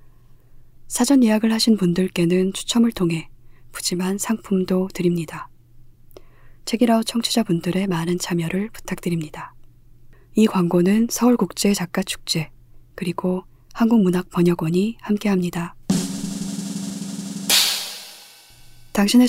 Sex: female